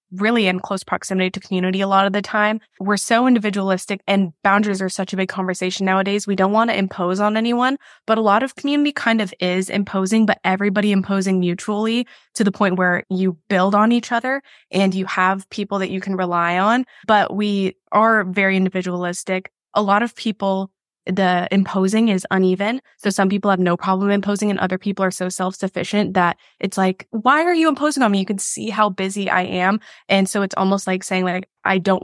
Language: English